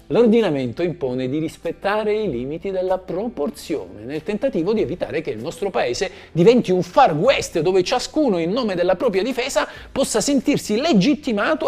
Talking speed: 155 wpm